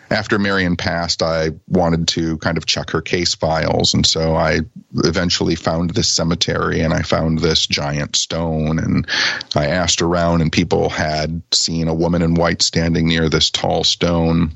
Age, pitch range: 40-59, 80-95 Hz